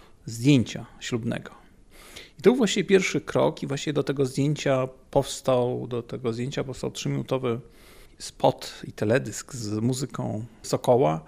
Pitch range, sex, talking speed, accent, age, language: 115-155 Hz, male, 115 wpm, native, 40-59, Polish